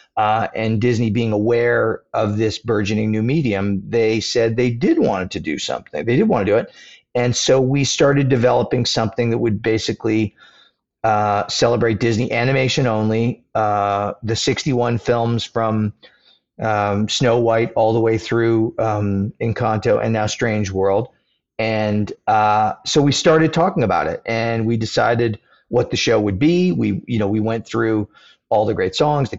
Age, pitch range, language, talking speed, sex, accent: 40-59, 110-135 Hz, English, 170 wpm, male, American